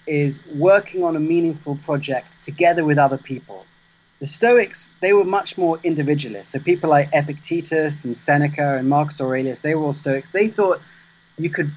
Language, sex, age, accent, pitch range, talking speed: English, male, 30-49, British, 145-185 Hz, 175 wpm